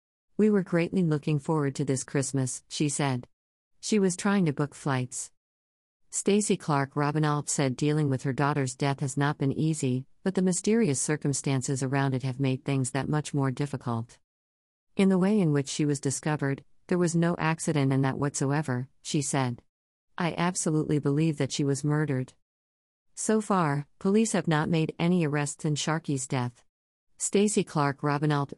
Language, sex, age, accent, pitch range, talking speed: English, female, 50-69, American, 135-160 Hz, 170 wpm